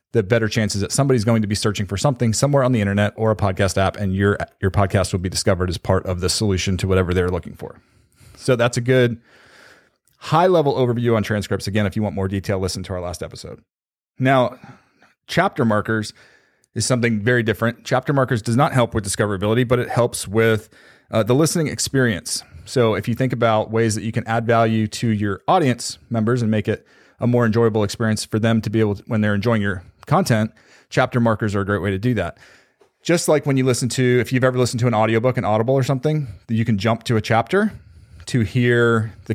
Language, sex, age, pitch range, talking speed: English, male, 30-49, 105-125 Hz, 225 wpm